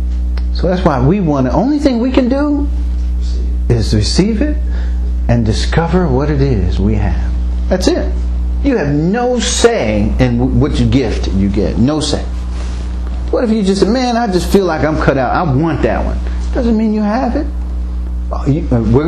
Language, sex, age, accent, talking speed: English, male, 40-59, American, 180 wpm